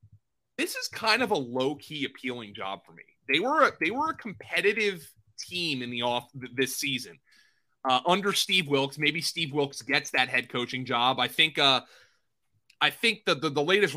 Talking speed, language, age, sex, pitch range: 195 wpm, English, 30-49, male, 130-185 Hz